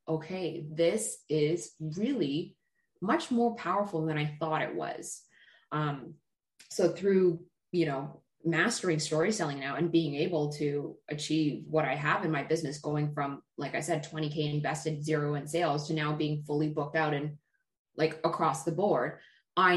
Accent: American